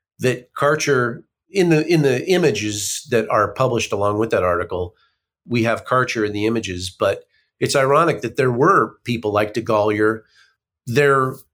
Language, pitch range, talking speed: English, 115-160 Hz, 160 wpm